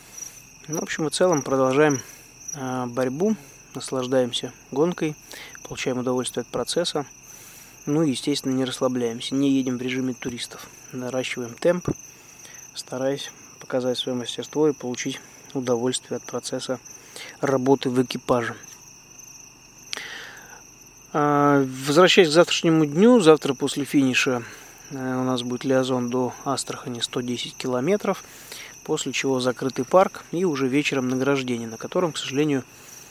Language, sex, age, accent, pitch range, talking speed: Russian, male, 20-39, native, 125-145 Hz, 115 wpm